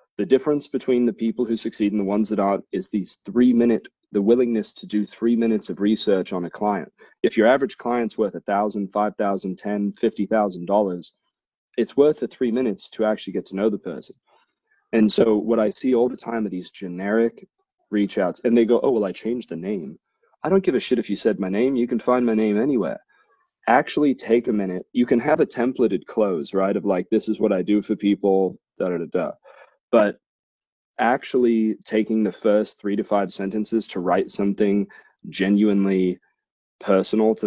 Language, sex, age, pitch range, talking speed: English, male, 30-49, 95-115 Hz, 205 wpm